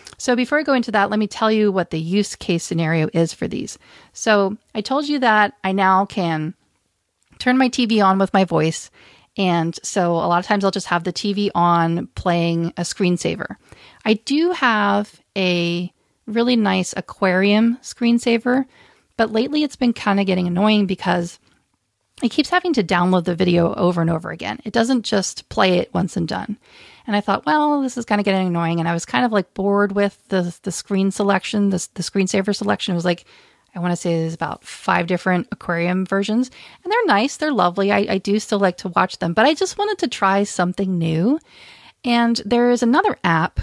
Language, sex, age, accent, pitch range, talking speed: English, female, 40-59, American, 180-235 Hz, 205 wpm